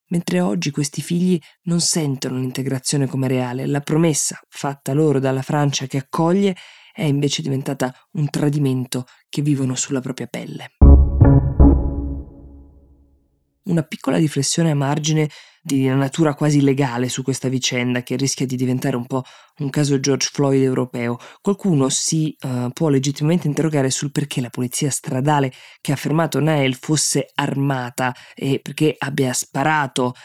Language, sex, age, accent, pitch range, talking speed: Italian, female, 20-39, native, 130-155 Hz, 145 wpm